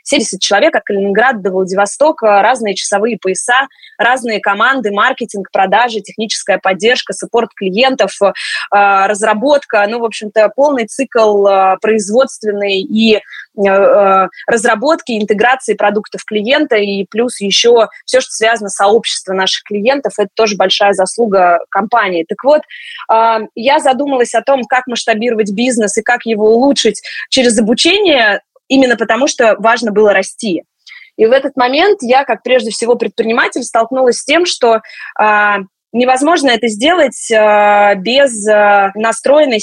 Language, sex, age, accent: Russian, female, 20-39, native